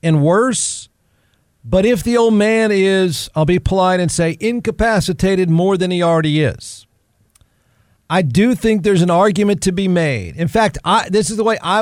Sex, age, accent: male, 50-69, American